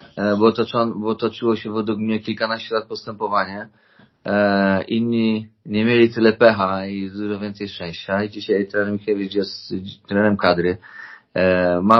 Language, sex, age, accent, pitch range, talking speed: Polish, male, 30-49, native, 100-110 Hz, 125 wpm